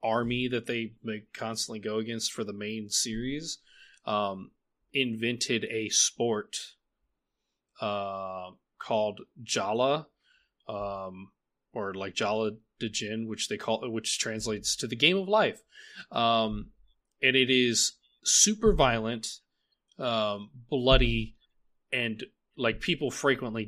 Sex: male